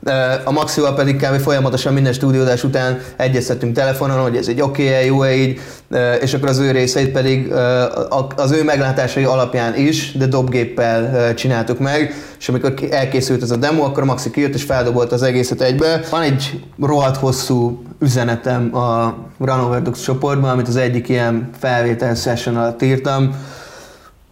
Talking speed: 155 wpm